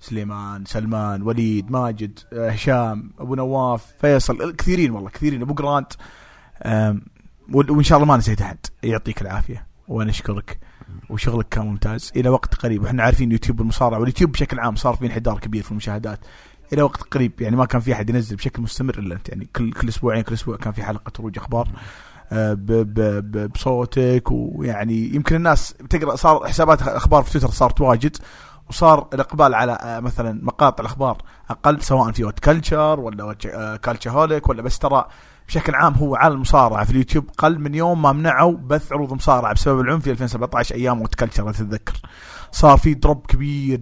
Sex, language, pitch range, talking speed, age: male, English, 110-140 Hz, 160 wpm, 30-49